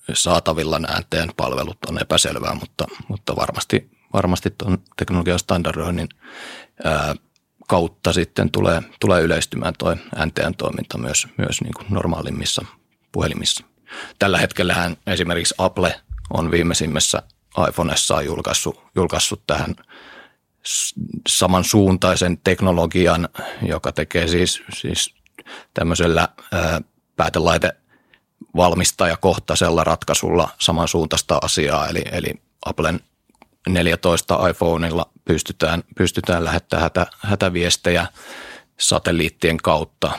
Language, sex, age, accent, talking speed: Finnish, male, 30-49, native, 85 wpm